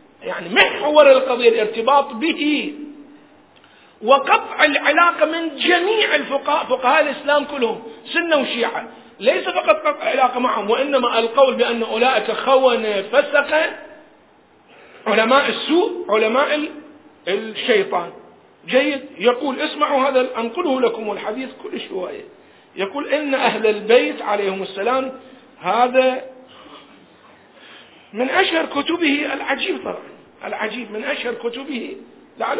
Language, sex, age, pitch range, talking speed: Arabic, male, 40-59, 250-310 Hz, 105 wpm